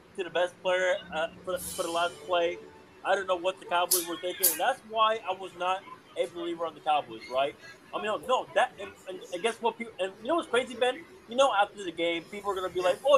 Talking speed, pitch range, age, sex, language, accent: 265 wpm, 170-220 Hz, 20-39, male, English, American